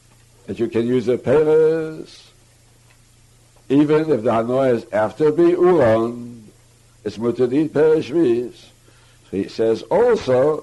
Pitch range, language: 115-165 Hz, English